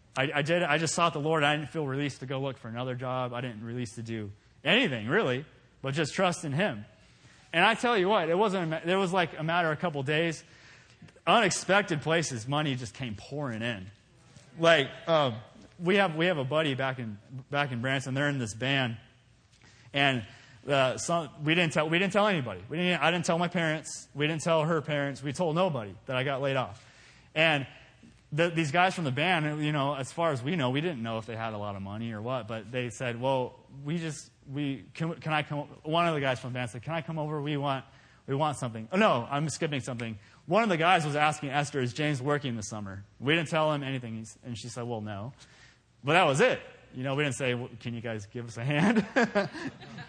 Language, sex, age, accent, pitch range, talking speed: English, male, 20-39, American, 125-165 Hz, 240 wpm